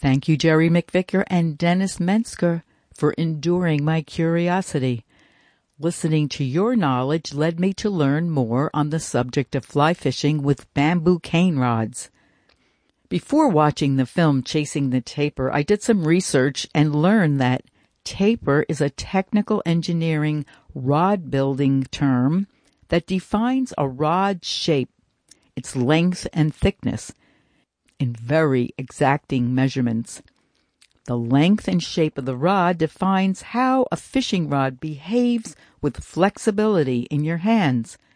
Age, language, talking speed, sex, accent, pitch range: 60-79, English, 130 wpm, female, American, 135-185 Hz